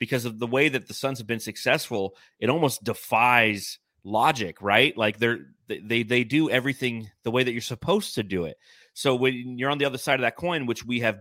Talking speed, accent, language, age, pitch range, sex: 225 wpm, American, English, 30-49, 110-135 Hz, male